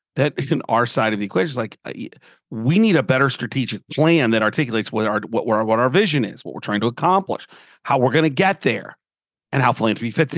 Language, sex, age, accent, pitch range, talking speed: English, male, 40-59, American, 110-135 Hz, 235 wpm